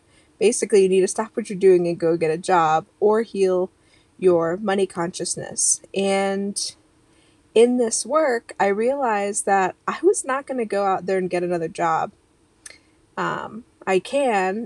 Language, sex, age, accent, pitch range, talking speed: English, female, 20-39, American, 185-225 Hz, 165 wpm